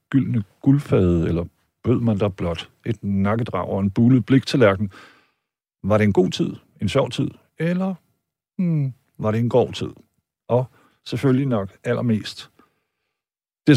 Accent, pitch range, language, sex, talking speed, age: native, 100-130 Hz, Danish, male, 155 wpm, 60-79